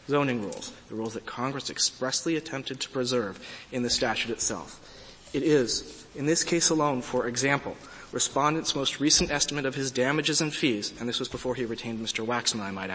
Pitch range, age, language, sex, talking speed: 115-150 Hz, 30-49, English, male, 190 wpm